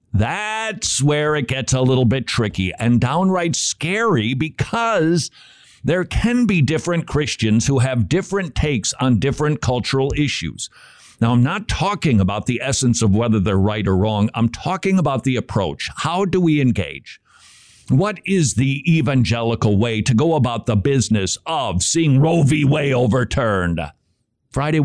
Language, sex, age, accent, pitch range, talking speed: English, male, 50-69, American, 115-160 Hz, 155 wpm